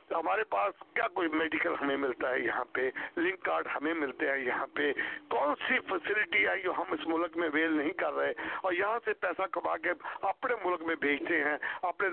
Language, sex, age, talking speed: English, male, 60-79, 205 wpm